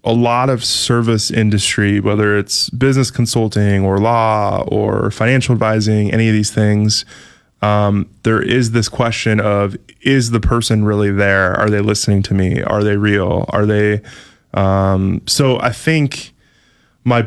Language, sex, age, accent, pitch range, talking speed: English, male, 20-39, American, 105-120 Hz, 155 wpm